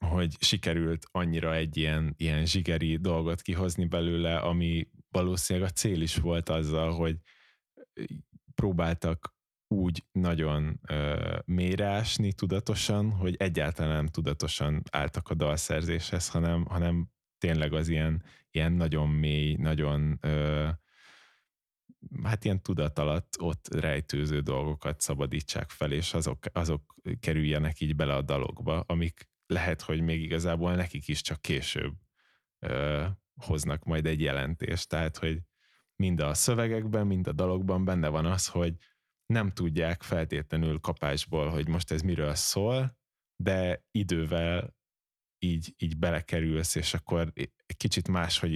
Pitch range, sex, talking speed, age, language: 75-90 Hz, male, 125 wpm, 20-39, Hungarian